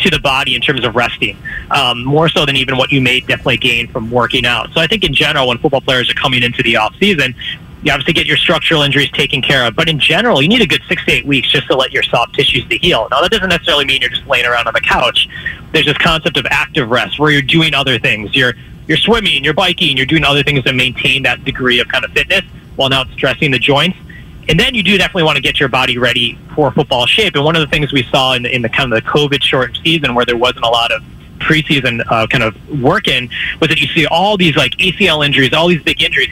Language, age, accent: English, 30-49, American